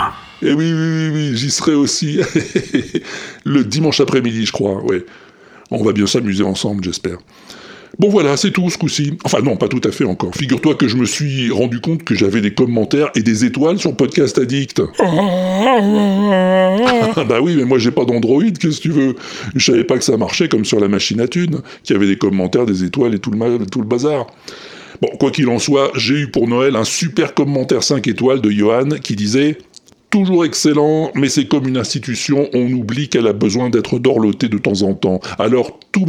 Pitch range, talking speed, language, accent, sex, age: 120-155 Hz, 210 wpm, French, French, female, 60-79